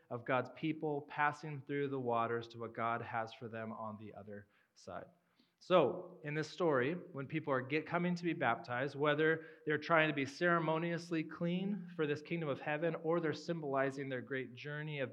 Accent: American